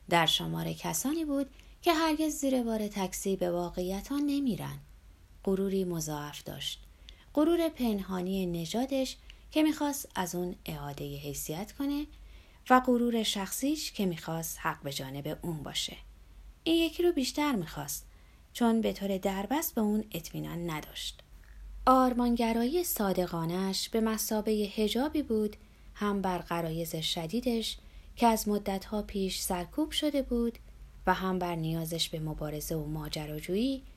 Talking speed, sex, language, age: 125 wpm, female, Persian, 30-49